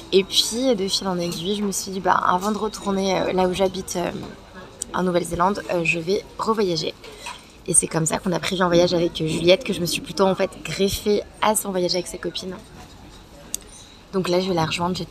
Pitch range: 180-210 Hz